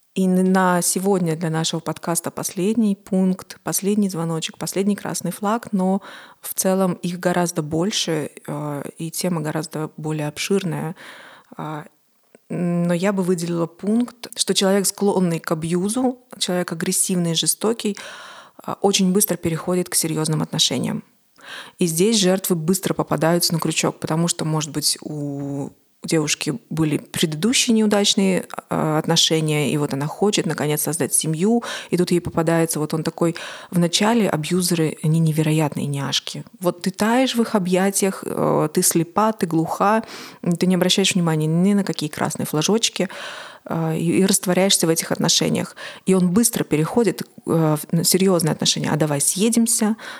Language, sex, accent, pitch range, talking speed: Russian, female, native, 160-200 Hz, 135 wpm